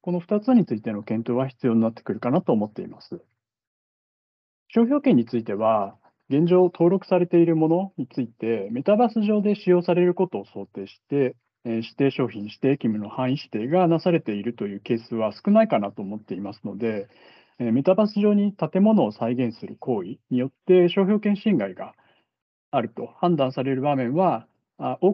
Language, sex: Japanese, male